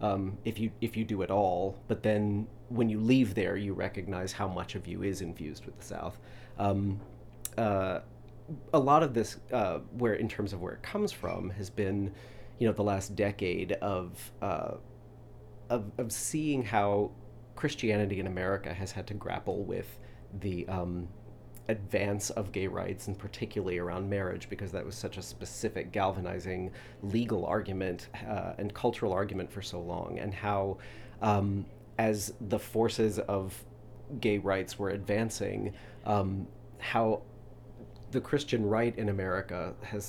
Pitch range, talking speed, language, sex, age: 100-120 Hz, 160 wpm, English, male, 30-49